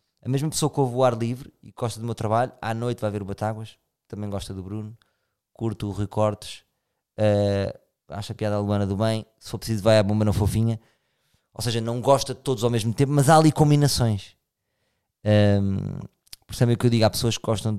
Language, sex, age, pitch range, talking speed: Portuguese, male, 20-39, 95-125 Hz, 215 wpm